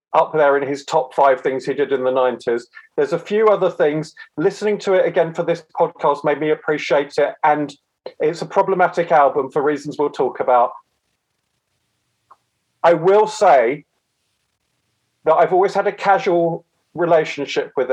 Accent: British